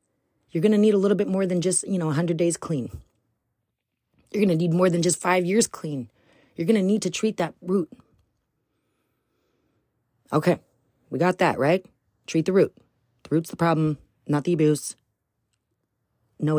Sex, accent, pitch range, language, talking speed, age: female, American, 135-180 Hz, English, 175 wpm, 30-49